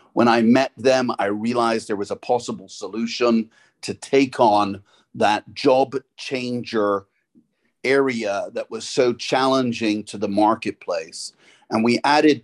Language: English